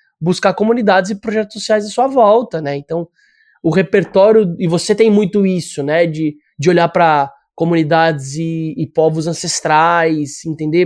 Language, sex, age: Portuguese, male, 20-39